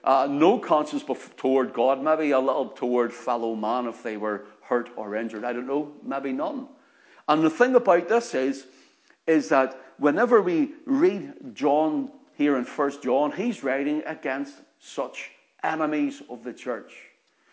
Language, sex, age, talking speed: English, male, 50-69, 160 wpm